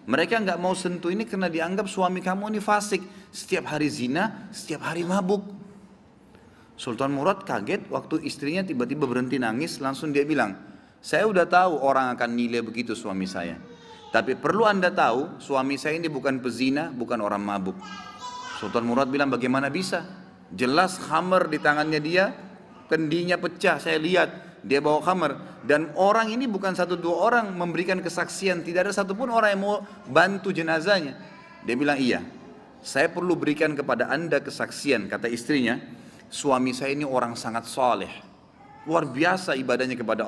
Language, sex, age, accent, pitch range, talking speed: Indonesian, male, 30-49, native, 130-185 Hz, 155 wpm